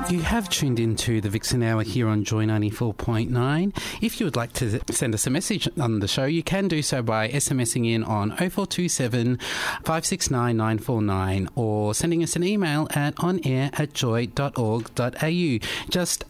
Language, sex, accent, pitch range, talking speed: English, male, Australian, 110-150 Hz, 160 wpm